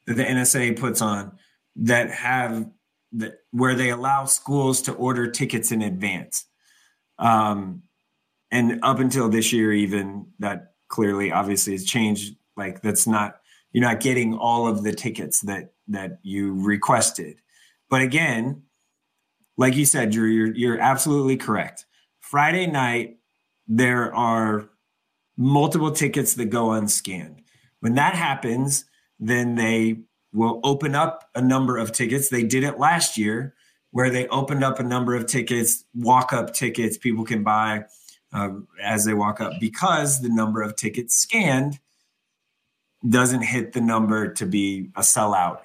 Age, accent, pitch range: 30-49, American, 110-135 Hz